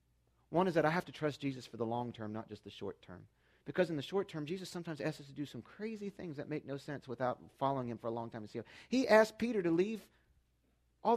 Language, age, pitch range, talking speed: English, 40-59, 105-165 Hz, 265 wpm